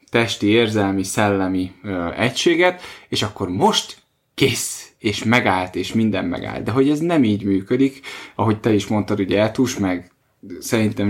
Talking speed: 145 wpm